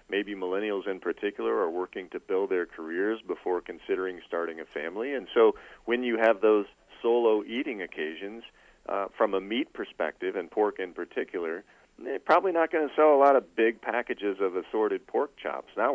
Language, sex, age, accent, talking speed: English, male, 40-59, American, 185 wpm